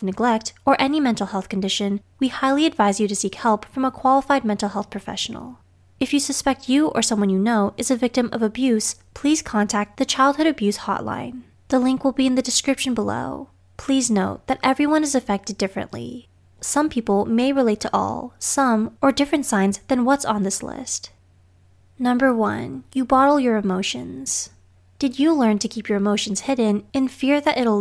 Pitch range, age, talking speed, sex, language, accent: 200-270 Hz, 20-39, 185 wpm, female, English, American